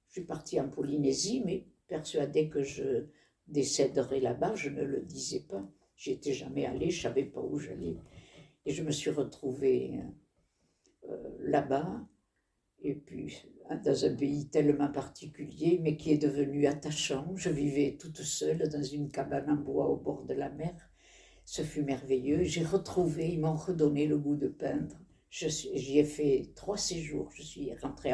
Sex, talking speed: female, 170 wpm